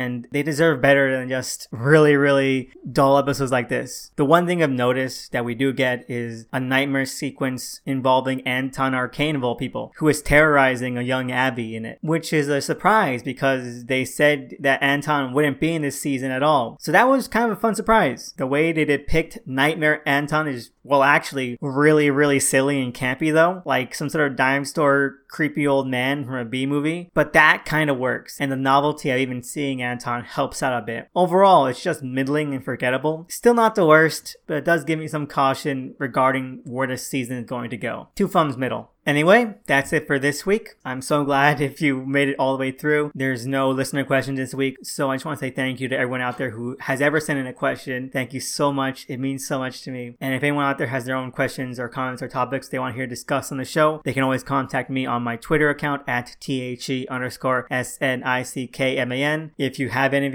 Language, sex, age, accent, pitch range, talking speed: English, male, 20-39, American, 130-150 Hz, 220 wpm